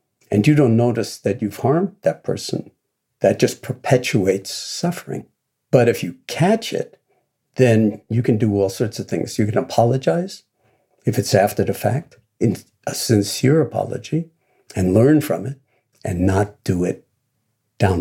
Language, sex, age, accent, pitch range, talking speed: English, male, 60-79, American, 100-130 Hz, 155 wpm